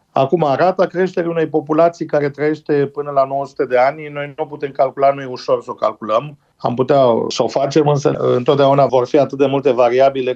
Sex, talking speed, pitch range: male, 205 wpm, 130-165 Hz